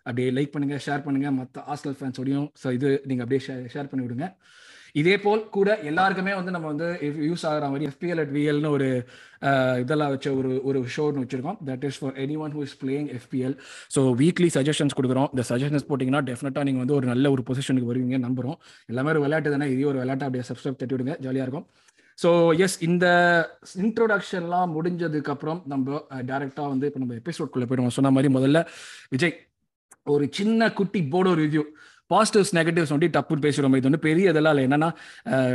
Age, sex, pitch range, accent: 20-39, male, 135-160 Hz, native